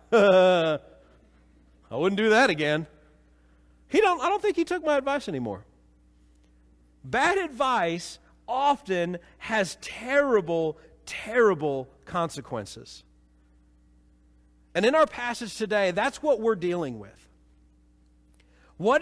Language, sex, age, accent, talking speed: English, male, 40-59, American, 105 wpm